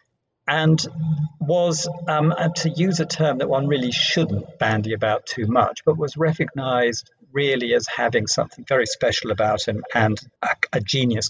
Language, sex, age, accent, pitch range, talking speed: English, male, 50-69, British, 120-155 Hz, 160 wpm